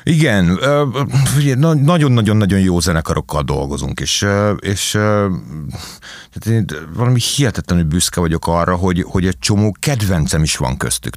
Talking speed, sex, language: 105 wpm, male, Hungarian